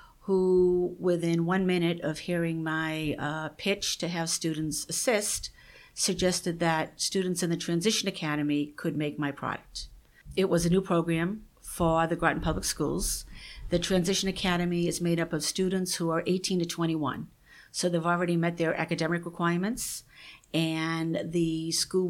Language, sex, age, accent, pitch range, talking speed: English, female, 50-69, American, 160-180 Hz, 155 wpm